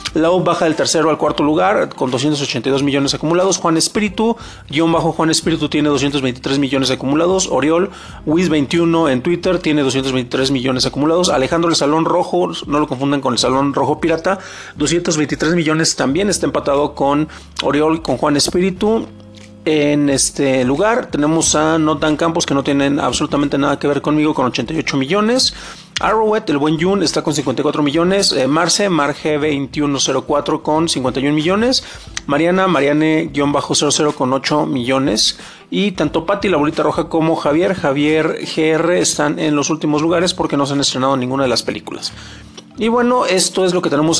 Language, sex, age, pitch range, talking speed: Spanish, male, 40-59, 145-175 Hz, 165 wpm